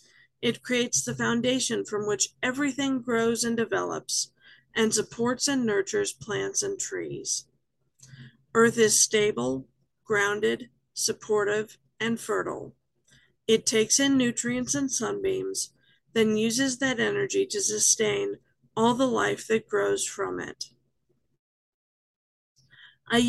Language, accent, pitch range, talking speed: English, American, 200-255 Hz, 115 wpm